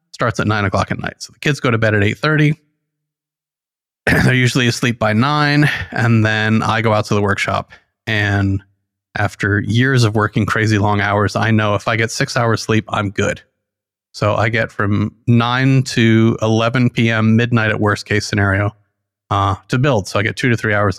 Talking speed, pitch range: 195 wpm, 105-130 Hz